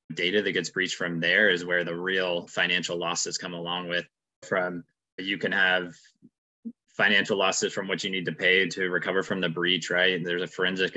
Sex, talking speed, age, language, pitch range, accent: male, 200 wpm, 20-39, English, 85-95 Hz, American